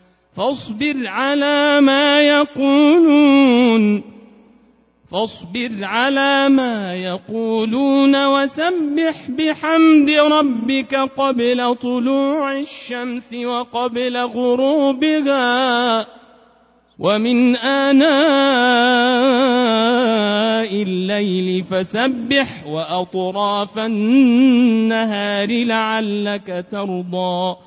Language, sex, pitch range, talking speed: Arabic, male, 220-275 Hz, 50 wpm